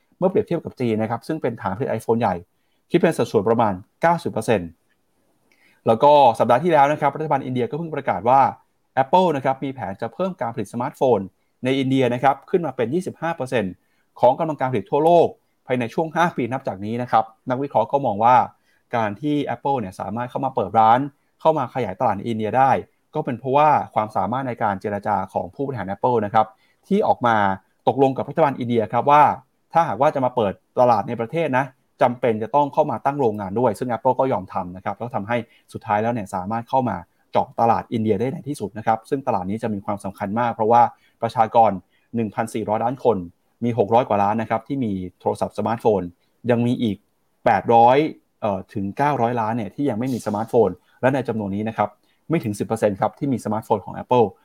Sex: male